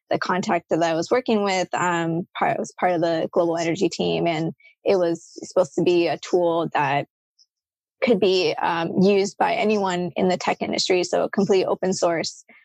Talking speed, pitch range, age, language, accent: 185 wpm, 170-200 Hz, 20-39, English, American